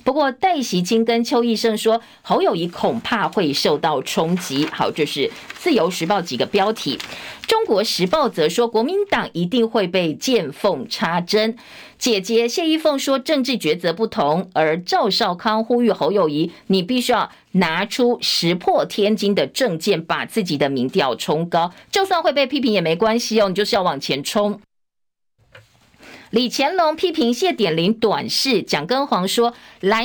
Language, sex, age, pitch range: Chinese, female, 50-69, 185-260 Hz